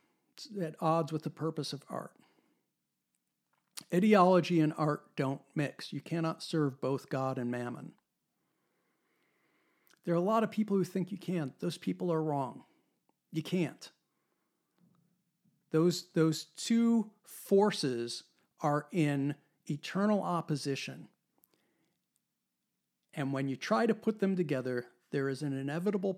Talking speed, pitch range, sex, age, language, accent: 125 wpm, 140-180 Hz, male, 50-69, English, American